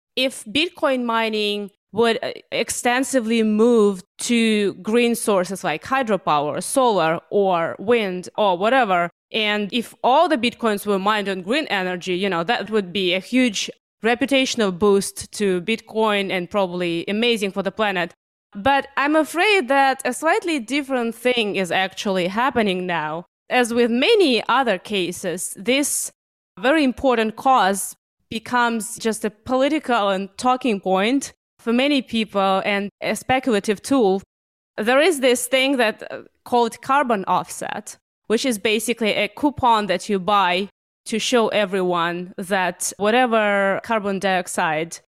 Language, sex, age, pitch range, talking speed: English, female, 20-39, 195-245 Hz, 135 wpm